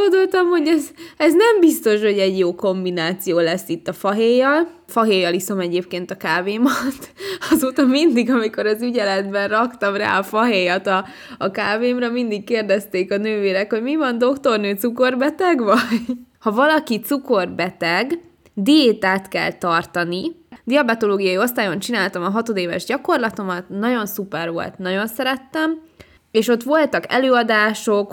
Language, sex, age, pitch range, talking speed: Hungarian, female, 20-39, 180-240 Hz, 130 wpm